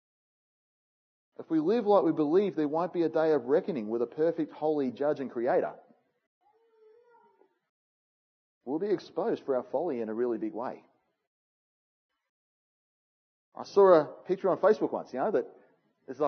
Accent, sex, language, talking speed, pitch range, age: Australian, male, English, 155 wpm, 135-220 Hz, 30-49